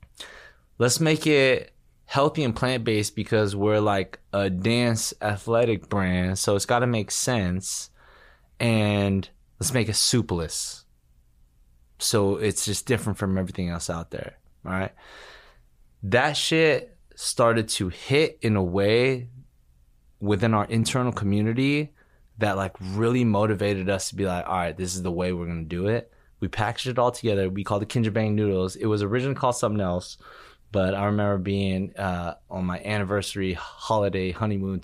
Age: 20-39